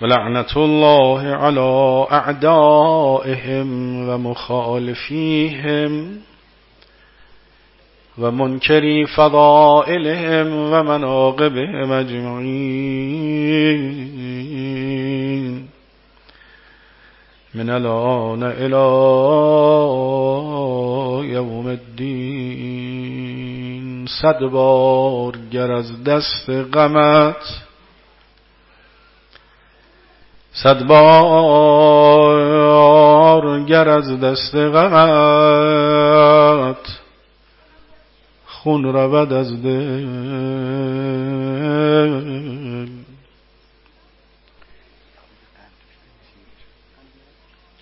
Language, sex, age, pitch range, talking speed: Persian, male, 50-69, 130-150 Hz, 45 wpm